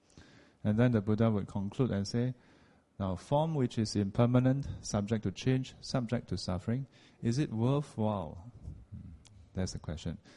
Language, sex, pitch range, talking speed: English, male, 95-120 Hz, 145 wpm